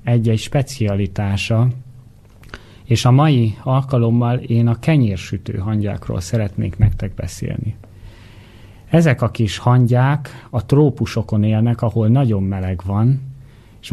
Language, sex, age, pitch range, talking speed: Hungarian, male, 30-49, 100-125 Hz, 110 wpm